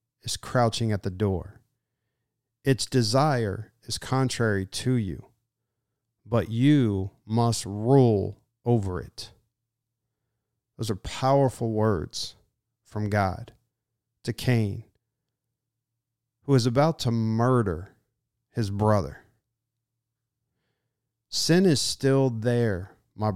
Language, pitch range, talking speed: English, 110-125 Hz, 95 wpm